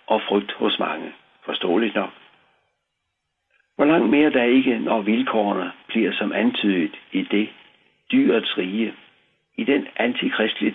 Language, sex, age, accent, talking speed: Danish, male, 60-79, native, 130 wpm